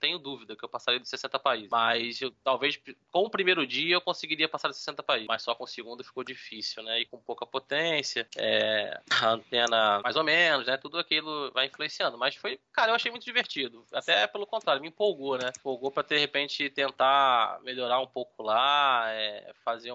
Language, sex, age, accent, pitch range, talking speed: Portuguese, male, 20-39, Brazilian, 130-185 Hz, 205 wpm